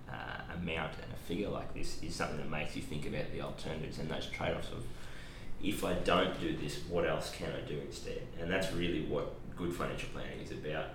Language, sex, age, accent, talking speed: English, male, 20-39, Australian, 220 wpm